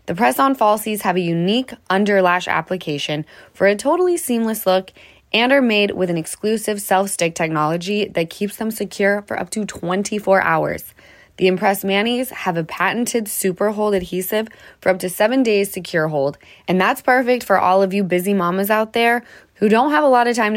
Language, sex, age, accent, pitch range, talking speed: English, female, 20-39, American, 175-225 Hz, 185 wpm